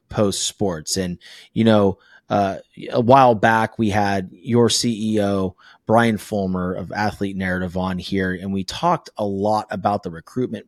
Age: 30-49